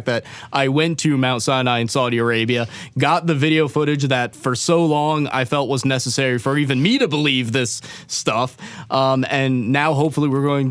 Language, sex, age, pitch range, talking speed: English, male, 20-39, 125-150 Hz, 190 wpm